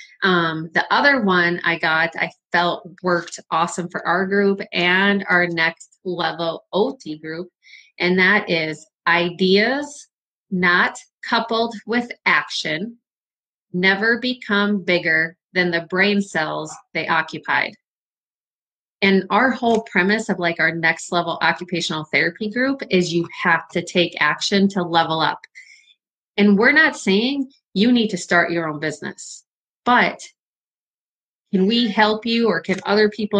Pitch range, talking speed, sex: 170-215 Hz, 140 wpm, female